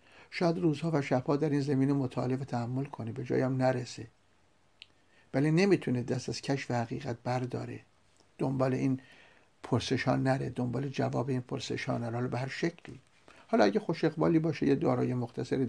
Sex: male